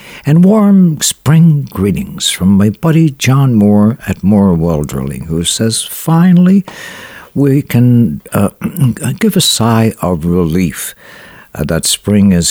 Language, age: English, 60-79